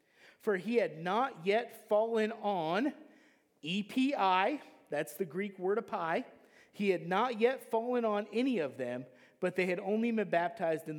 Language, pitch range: English, 170-265 Hz